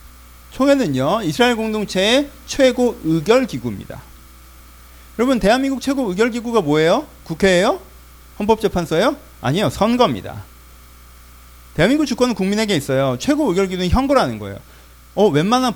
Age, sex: 40-59, male